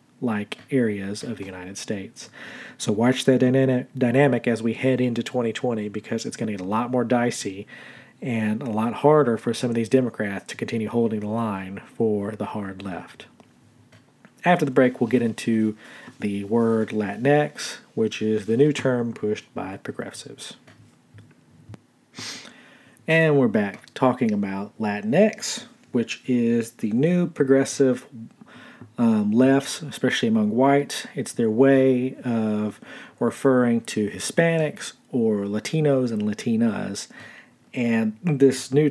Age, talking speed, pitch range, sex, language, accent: 40-59, 135 wpm, 110-145 Hz, male, English, American